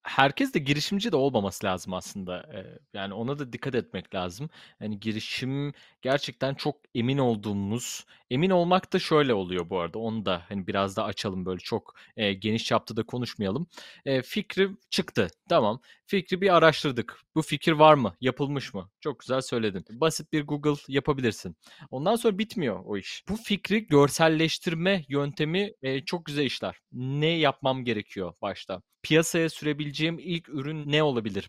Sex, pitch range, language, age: male, 110-160 Hz, Turkish, 30-49